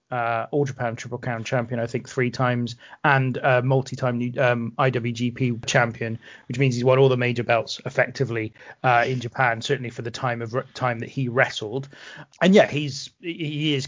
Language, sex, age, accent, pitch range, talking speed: English, male, 30-49, British, 120-145 Hz, 180 wpm